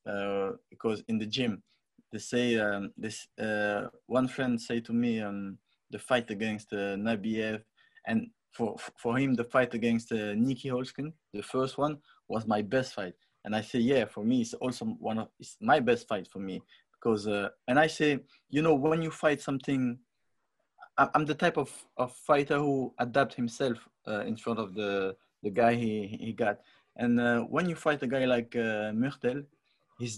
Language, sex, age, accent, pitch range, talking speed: English, male, 20-39, French, 110-140 Hz, 190 wpm